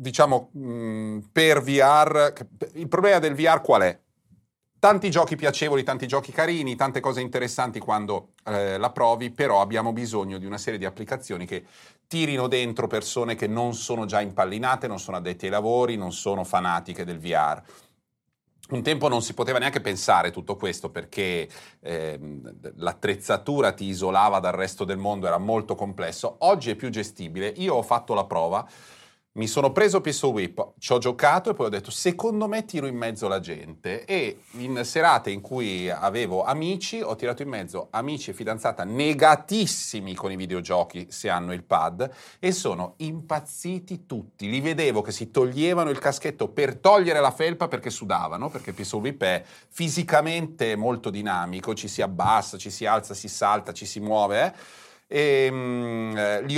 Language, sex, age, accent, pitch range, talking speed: Italian, male, 40-59, native, 105-155 Hz, 170 wpm